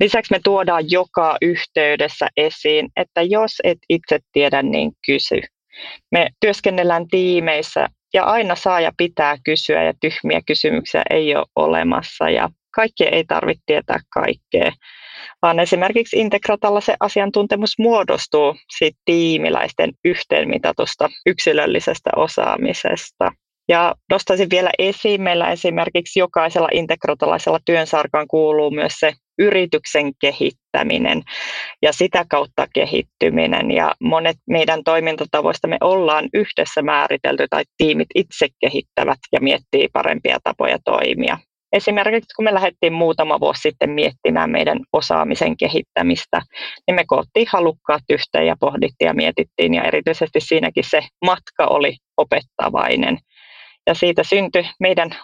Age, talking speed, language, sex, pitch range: 30-49, 120 wpm, Finnish, female, 160-205 Hz